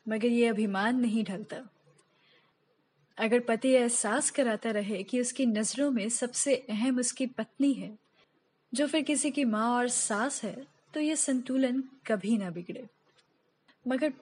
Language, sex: Hindi, female